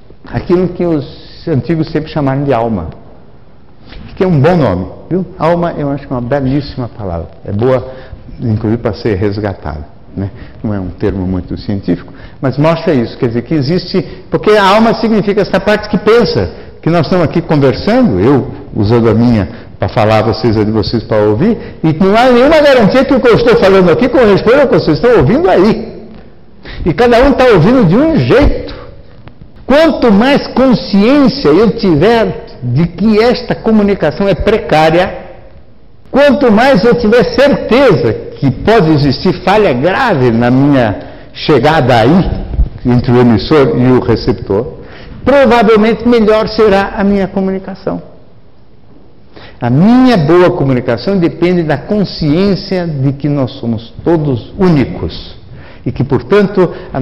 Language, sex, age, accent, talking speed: Portuguese, male, 60-79, Brazilian, 160 wpm